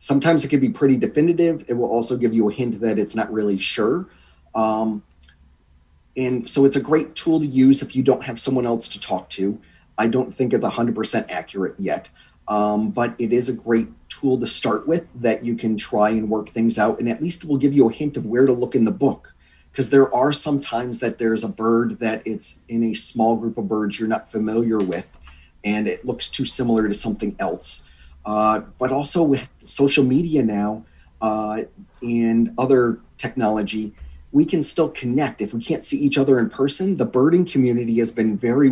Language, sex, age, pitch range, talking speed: English, male, 30-49, 105-130 Hz, 210 wpm